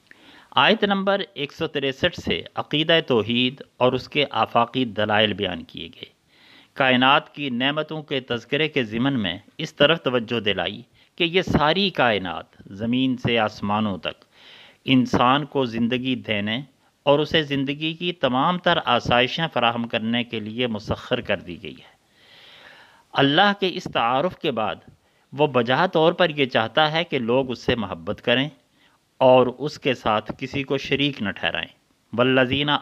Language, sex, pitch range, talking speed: Urdu, male, 120-155 Hz, 150 wpm